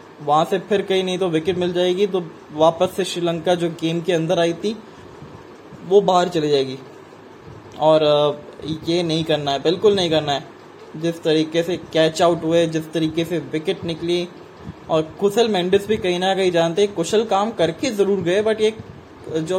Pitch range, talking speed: 160-195 Hz, 185 wpm